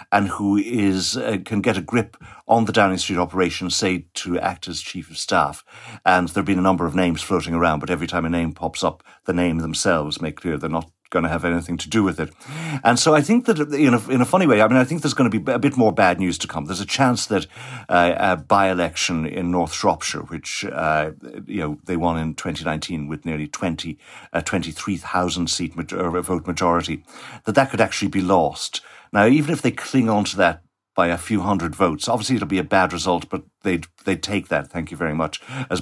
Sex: male